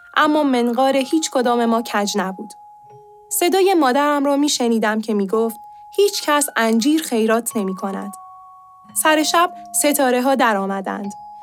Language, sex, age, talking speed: Persian, female, 10-29, 140 wpm